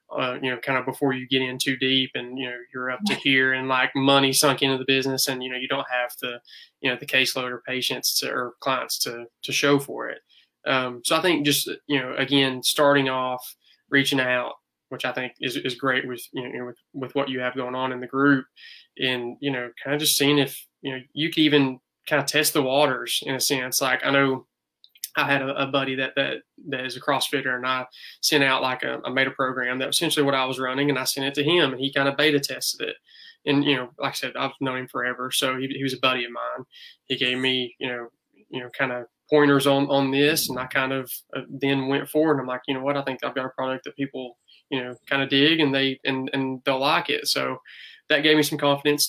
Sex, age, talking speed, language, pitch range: male, 20-39, 260 wpm, English, 130-140 Hz